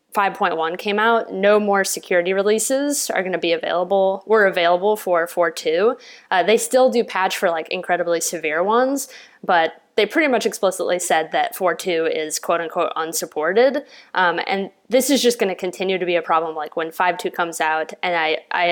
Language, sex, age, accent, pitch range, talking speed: English, female, 20-39, American, 170-225 Hz, 175 wpm